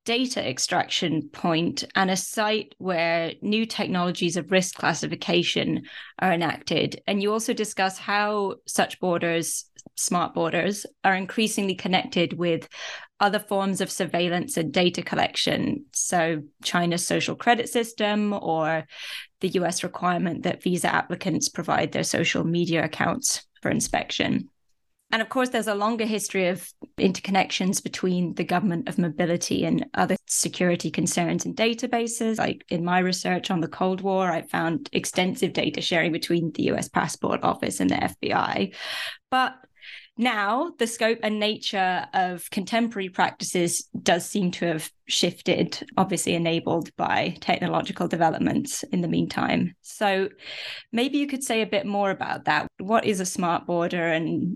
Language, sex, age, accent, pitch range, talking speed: English, female, 20-39, British, 175-215 Hz, 145 wpm